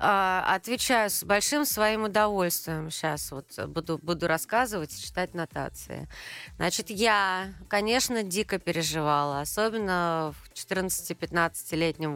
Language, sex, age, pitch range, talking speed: Russian, female, 30-49, 170-220 Hz, 100 wpm